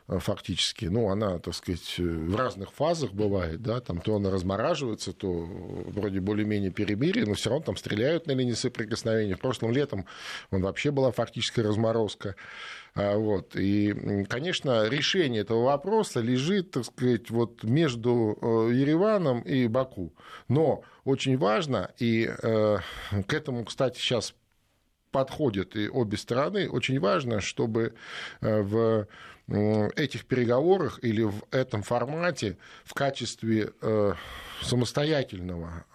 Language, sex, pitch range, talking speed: Russian, male, 100-125 Hz, 120 wpm